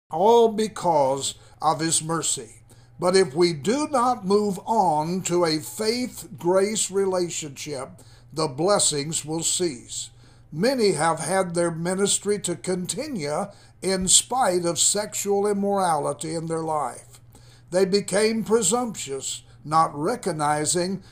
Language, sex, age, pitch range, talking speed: English, male, 60-79, 150-200 Hz, 115 wpm